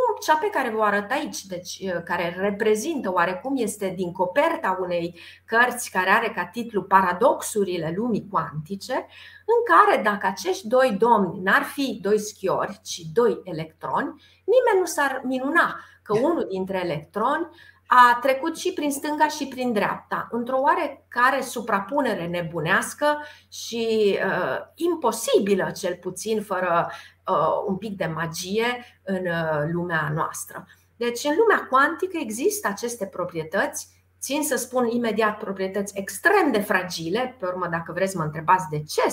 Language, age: Romanian, 30-49